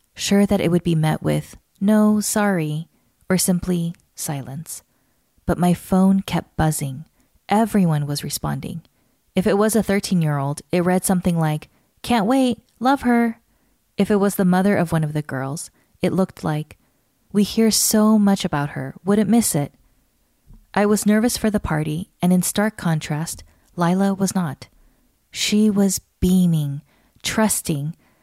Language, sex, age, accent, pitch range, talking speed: English, female, 20-39, American, 155-200 Hz, 155 wpm